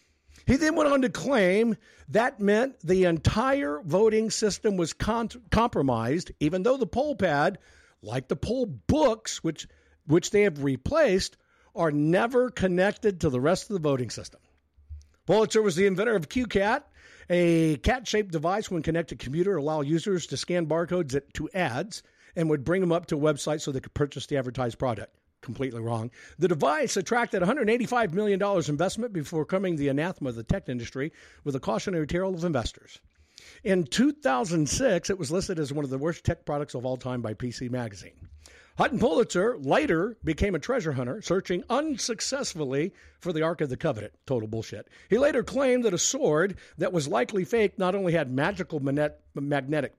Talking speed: 175 wpm